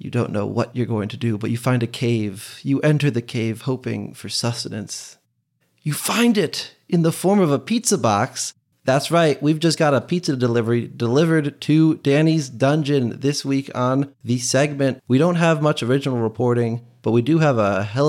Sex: male